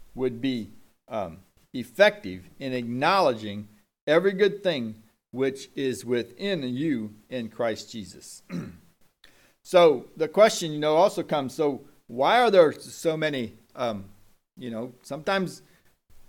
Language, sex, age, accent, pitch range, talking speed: English, male, 40-59, American, 115-155 Hz, 120 wpm